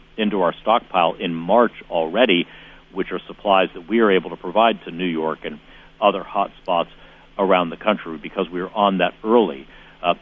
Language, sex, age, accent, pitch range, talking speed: English, male, 50-69, American, 90-110 Hz, 190 wpm